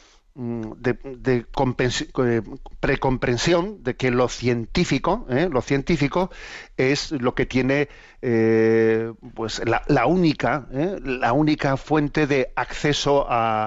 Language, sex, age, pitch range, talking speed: Spanish, male, 50-69, 115-145 Hz, 120 wpm